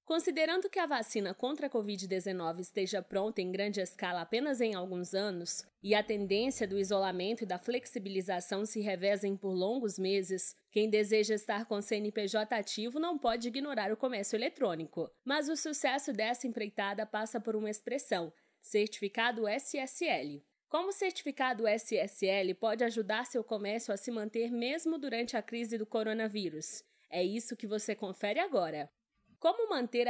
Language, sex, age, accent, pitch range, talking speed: Portuguese, female, 20-39, Brazilian, 200-260 Hz, 155 wpm